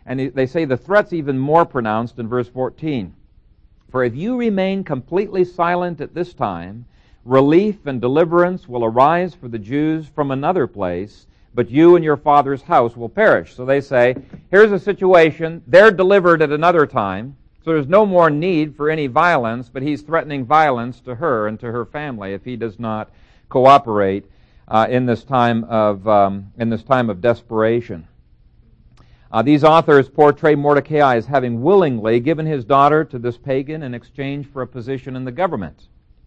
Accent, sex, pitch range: American, male, 115-155 Hz